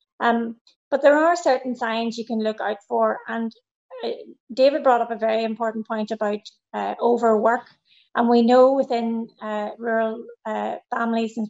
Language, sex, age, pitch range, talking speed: English, female, 30-49, 225-255 Hz, 165 wpm